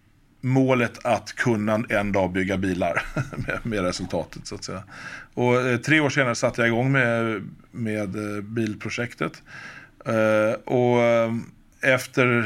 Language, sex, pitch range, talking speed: Swedish, male, 100-120 Hz, 115 wpm